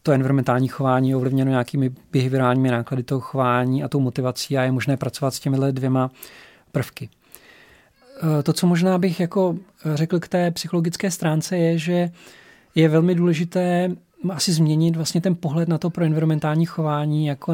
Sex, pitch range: male, 135-165 Hz